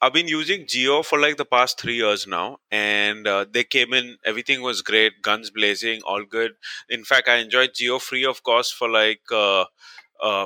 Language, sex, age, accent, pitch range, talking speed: English, male, 30-49, Indian, 120-145 Hz, 200 wpm